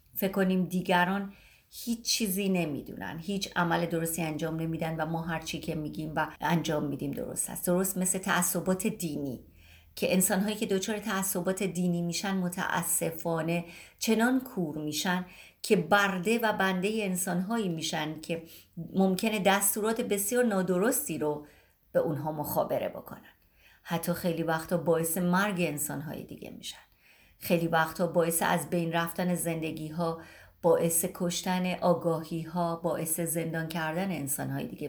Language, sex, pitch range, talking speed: Persian, female, 165-205 Hz, 130 wpm